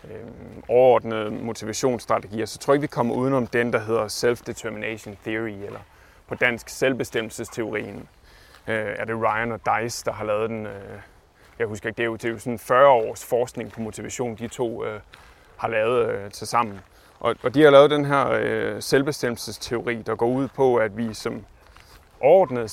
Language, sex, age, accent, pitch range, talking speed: Danish, male, 30-49, native, 105-125 Hz, 180 wpm